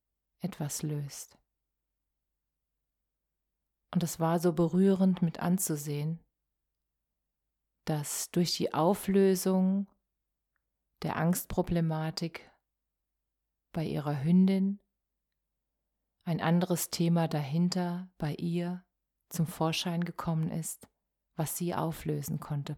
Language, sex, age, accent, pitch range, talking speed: German, female, 30-49, German, 155-180 Hz, 85 wpm